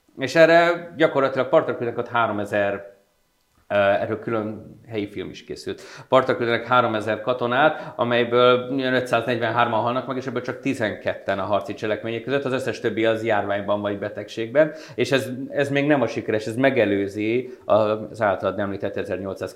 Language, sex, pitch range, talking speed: Hungarian, male, 110-135 Hz, 140 wpm